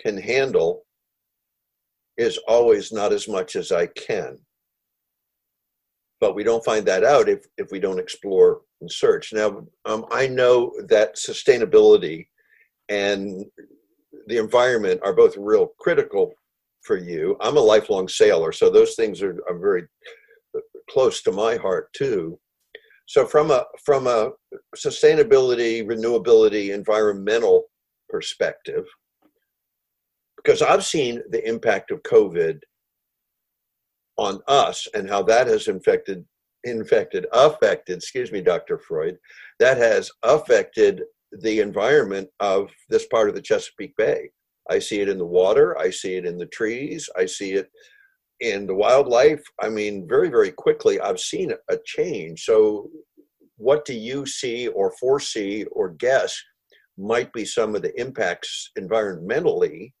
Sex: male